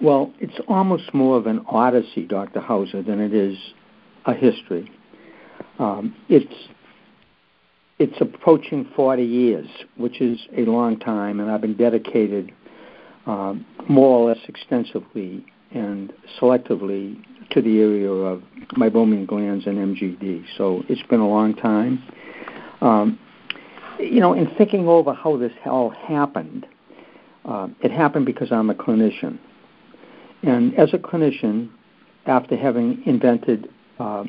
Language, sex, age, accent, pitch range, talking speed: English, male, 60-79, American, 110-165 Hz, 130 wpm